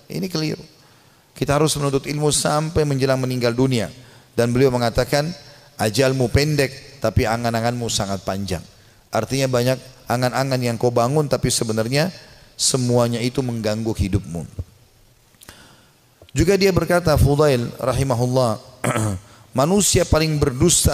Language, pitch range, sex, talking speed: Indonesian, 120-150 Hz, male, 110 wpm